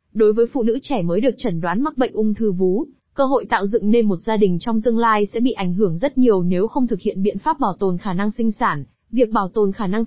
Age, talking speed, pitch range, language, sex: 20-39, 285 wpm, 195-240 Hz, Vietnamese, female